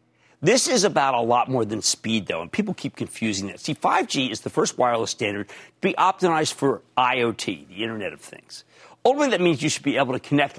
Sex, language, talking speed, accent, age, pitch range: male, English, 220 wpm, American, 50-69, 130-195 Hz